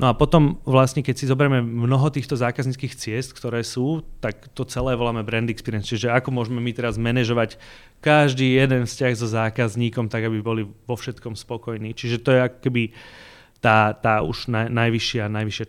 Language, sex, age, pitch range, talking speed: Slovak, male, 30-49, 110-130 Hz, 170 wpm